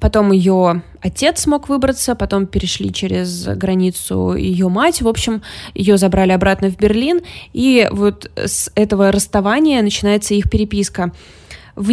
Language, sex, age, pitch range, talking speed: Russian, female, 20-39, 185-220 Hz, 135 wpm